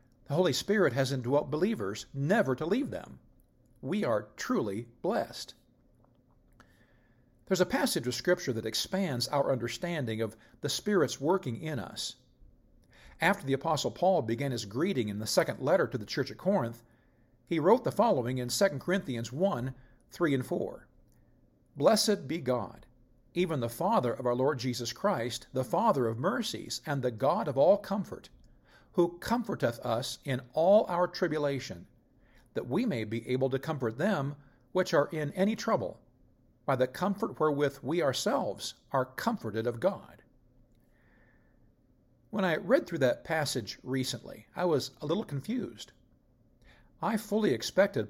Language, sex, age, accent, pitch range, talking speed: English, male, 50-69, American, 120-180 Hz, 150 wpm